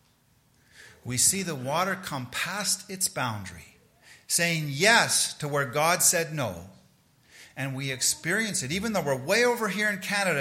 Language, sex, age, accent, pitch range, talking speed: English, male, 50-69, American, 135-195 Hz, 155 wpm